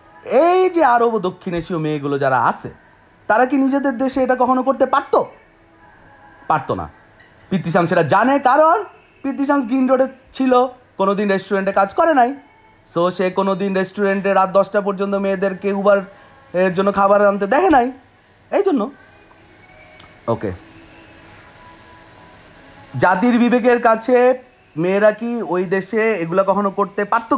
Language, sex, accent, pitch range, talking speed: Bengali, male, native, 175-235 Hz, 135 wpm